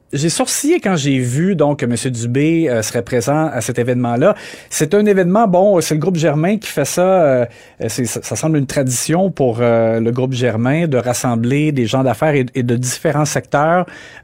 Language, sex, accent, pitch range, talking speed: French, male, Canadian, 130-165 Hz, 195 wpm